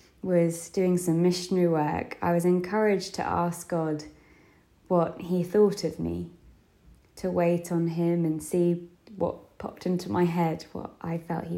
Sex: female